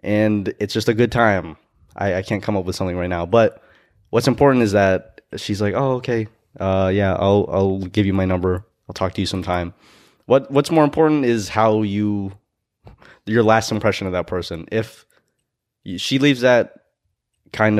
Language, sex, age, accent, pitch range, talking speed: English, male, 20-39, American, 95-115 Hz, 185 wpm